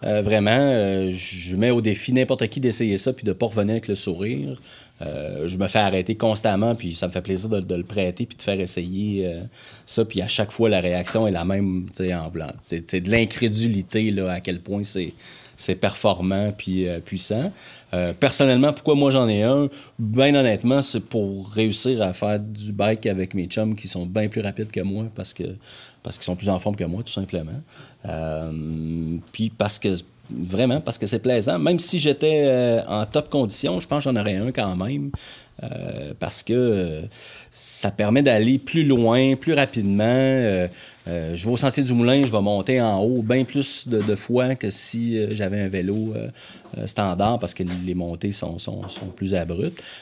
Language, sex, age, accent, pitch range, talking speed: French, male, 30-49, Canadian, 95-120 Hz, 210 wpm